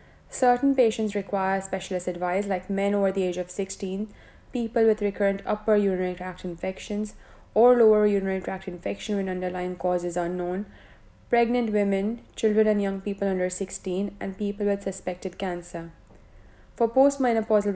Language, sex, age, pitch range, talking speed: English, female, 20-39, 185-215 Hz, 150 wpm